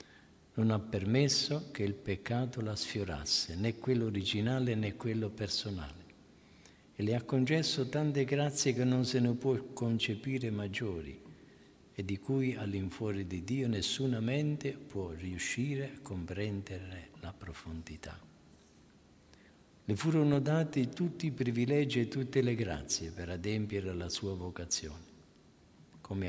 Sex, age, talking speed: male, 50-69, 130 wpm